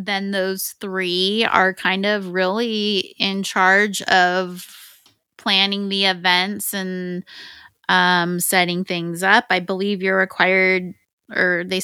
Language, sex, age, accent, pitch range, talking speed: English, female, 20-39, American, 180-205 Hz, 120 wpm